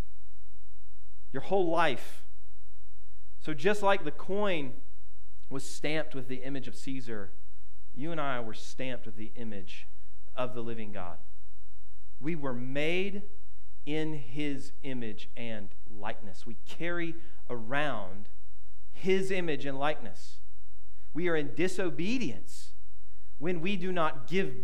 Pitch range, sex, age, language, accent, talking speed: 95-155 Hz, male, 40-59, English, American, 125 wpm